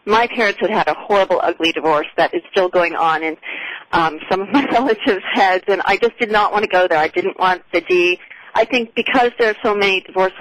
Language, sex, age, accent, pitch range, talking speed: English, female, 40-59, American, 175-215 Hz, 240 wpm